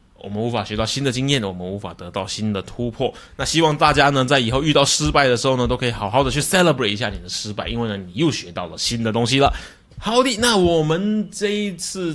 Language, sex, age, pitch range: Chinese, male, 20-39, 105-135 Hz